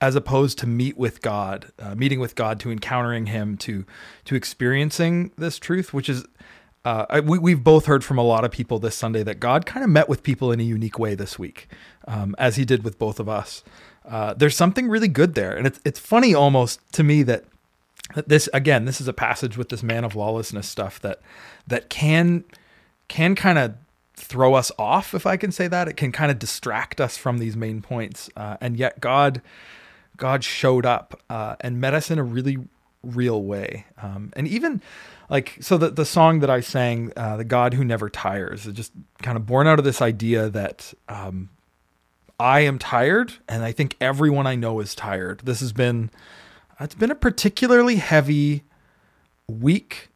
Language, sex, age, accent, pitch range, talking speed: English, male, 30-49, American, 110-150 Hz, 200 wpm